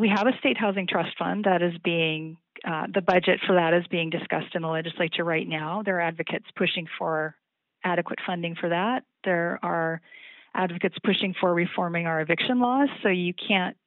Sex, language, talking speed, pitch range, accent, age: female, English, 190 wpm, 175-210 Hz, American, 40-59